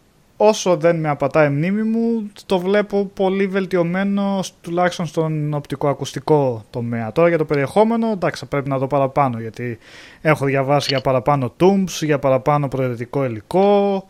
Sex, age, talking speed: male, 20-39, 140 wpm